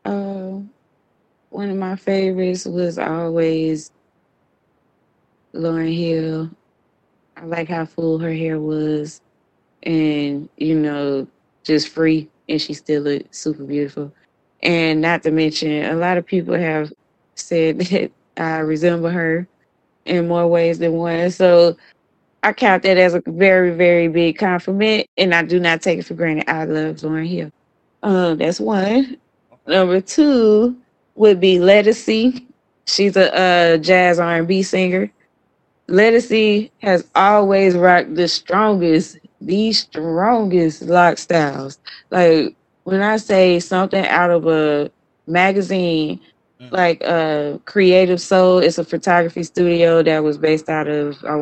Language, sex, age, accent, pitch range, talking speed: English, female, 20-39, American, 160-190 Hz, 135 wpm